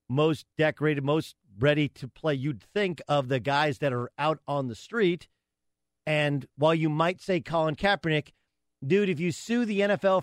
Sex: male